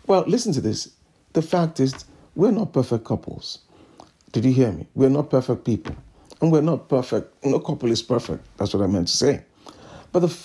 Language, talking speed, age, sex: English, 200 wpm, 50-69, male